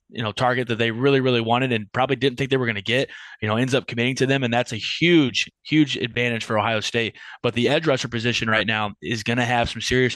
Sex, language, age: male, English, 20-39